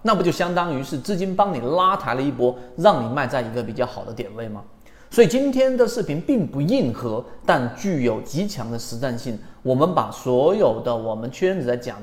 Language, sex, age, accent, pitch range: Chinese, male, 30-49, native, 115-160 Hz